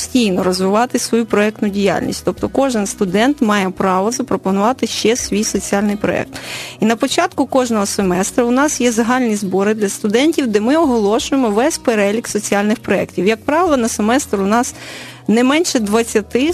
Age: 30-49